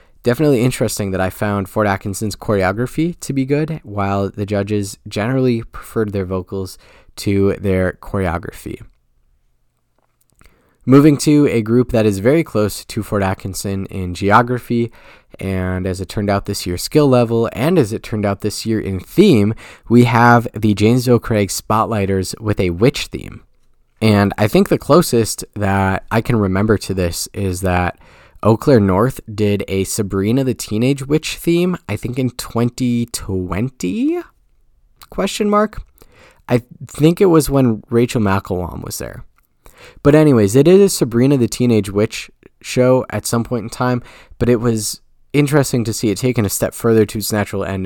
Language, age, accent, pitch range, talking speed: English, 20-39, American, 95-125 Hz, 160 wpm